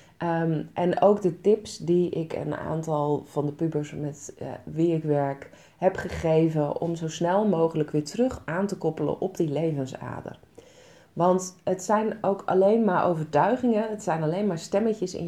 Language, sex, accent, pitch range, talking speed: Dutch, female, Dutch, 145-175 Hz, 170 wpm